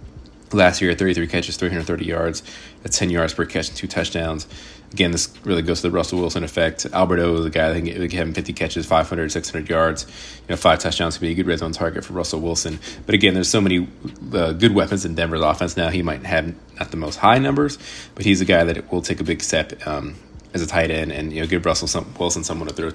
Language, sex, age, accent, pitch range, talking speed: English, male, 30-49, American, 80-95 Hz, 250 wpm